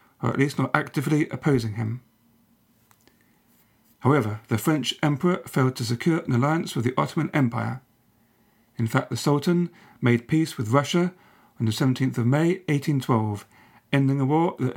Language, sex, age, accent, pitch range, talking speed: English, male, 40-59, British, 120-150 Hz, 155 wpm